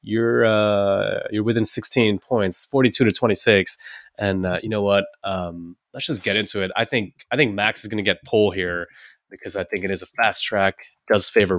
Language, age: English, 20-39